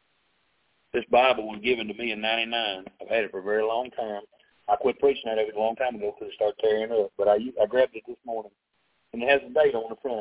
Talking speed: 290 wpm